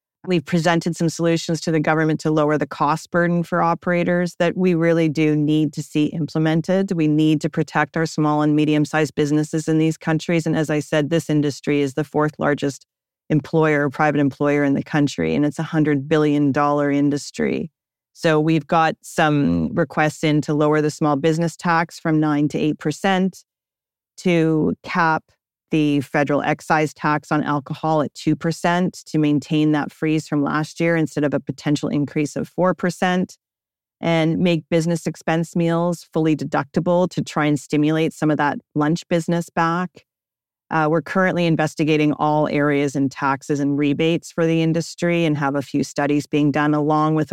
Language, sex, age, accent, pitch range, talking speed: English, female, 40-59, American, 145-165 Hz, 170 wpm